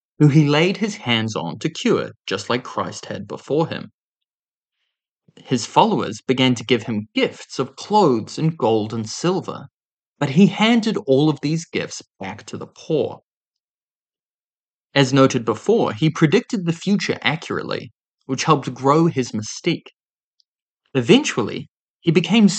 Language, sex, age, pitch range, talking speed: English, male, 20-39, 125-195 Hz, 145 wpm